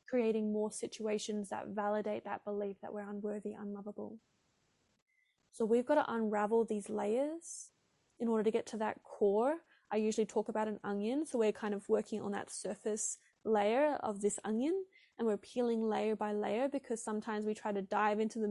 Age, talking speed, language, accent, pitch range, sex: 10-29, 185 wpm, English, Australian, 210-265 Hz, female